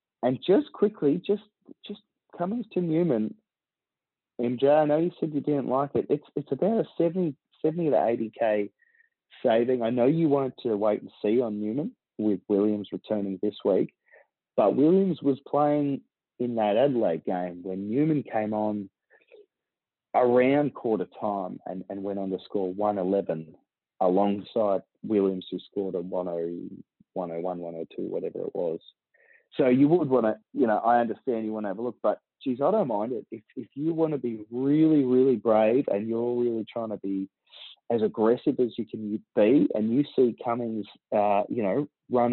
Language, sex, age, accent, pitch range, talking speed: English, male, 30-49, Australian, 100-145 Hz, 175 wpm